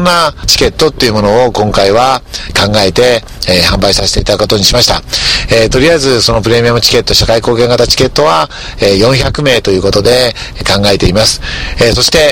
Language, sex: Japanese, male